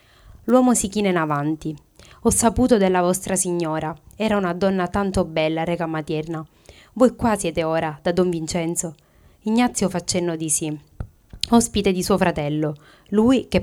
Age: 30-49